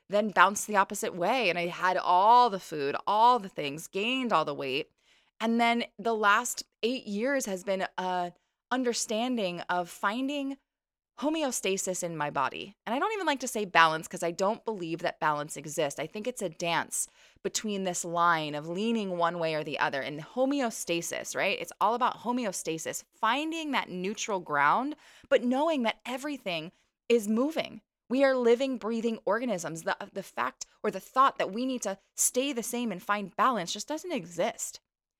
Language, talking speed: English, 180 wpm